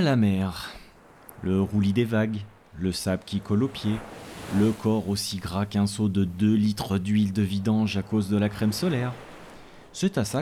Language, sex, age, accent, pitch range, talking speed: French, male, 30-49, French, 95-115 Hz, 190 wpm